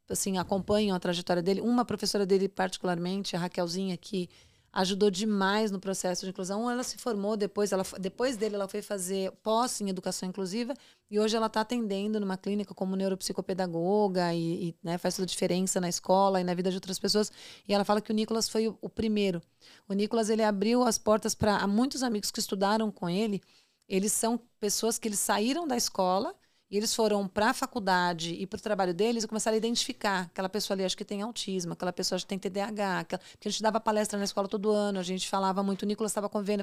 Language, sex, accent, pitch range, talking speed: Portuguese, female, Brazilian, 185-215 Hz, 215 wpm